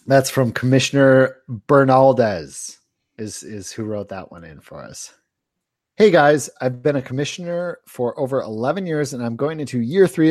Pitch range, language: 115-150 Hz, English